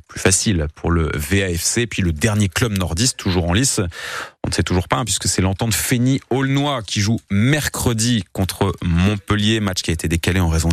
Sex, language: male, French